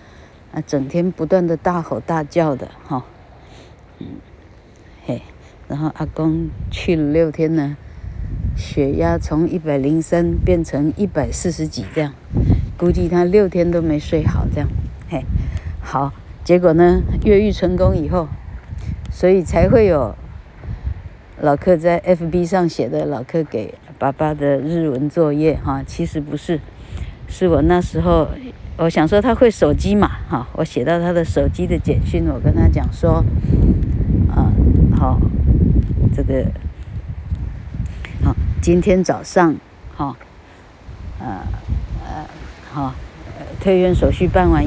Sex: female